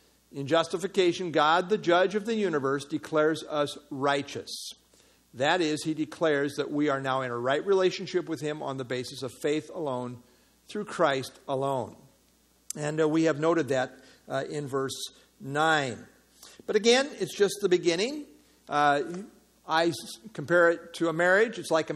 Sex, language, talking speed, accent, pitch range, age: male, English, 165 wpm, American, 145-185 Hz, 50-69